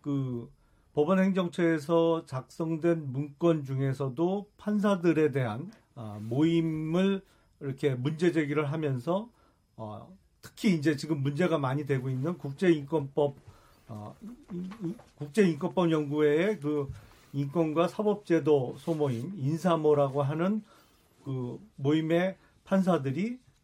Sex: male